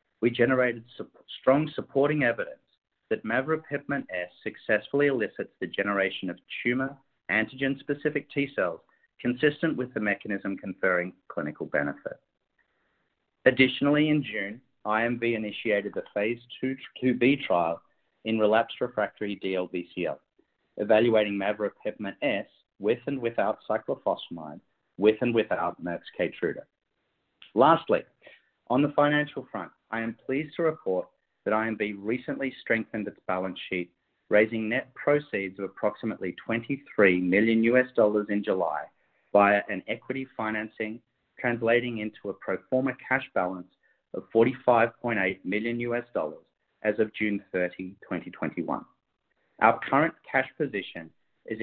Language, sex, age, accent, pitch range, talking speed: English, male, 50-69, Australian, 105-130 Hz, 120 wpm